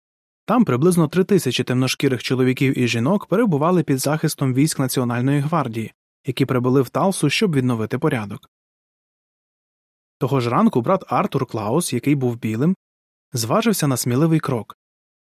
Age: 20-39